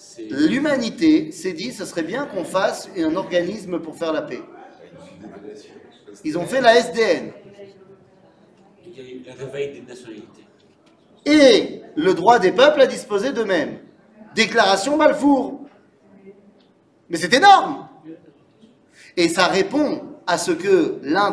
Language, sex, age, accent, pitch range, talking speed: French, male, 40-59, French, 180-295 Hz, 110 wpm